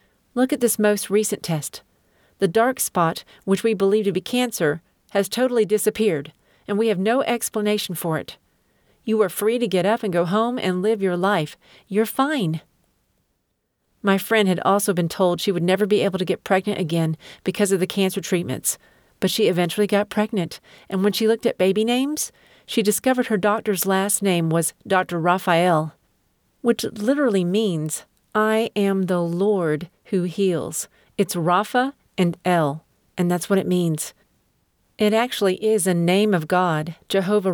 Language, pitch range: English, 175-215 Hz